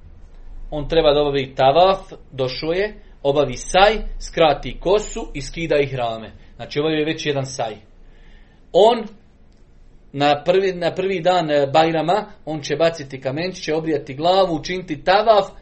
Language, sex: Croatian, male